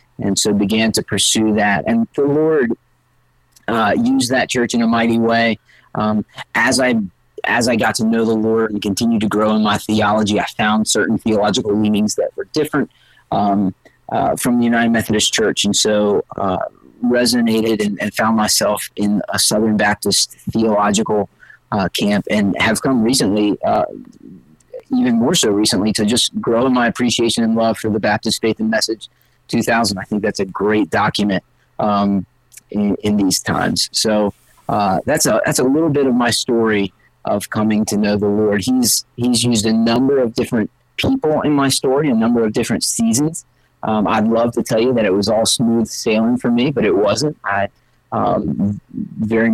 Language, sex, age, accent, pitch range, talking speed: English, male, 30-49, American, 105-120 Hz, 185 wpm